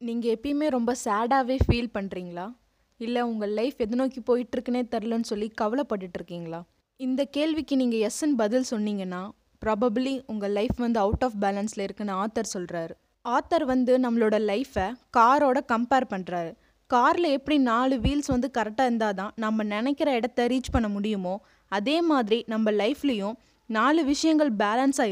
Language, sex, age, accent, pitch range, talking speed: Tamil, female, 20-39, native, 215-265 Hz, 140 wpm